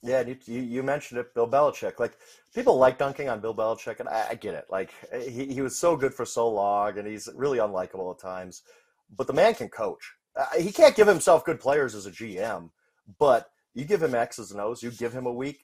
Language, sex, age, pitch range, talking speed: English, male, 30-49, 105-150 Hz, 240 wpm